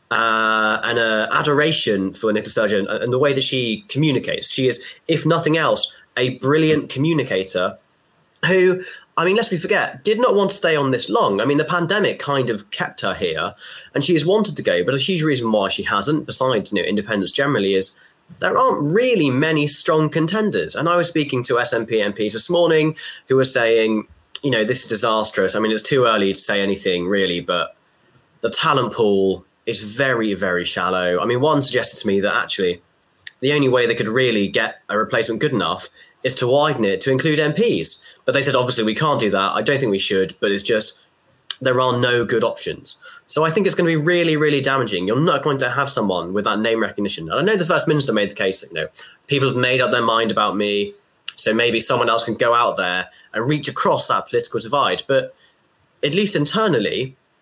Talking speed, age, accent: 215 wpm, 20-39, British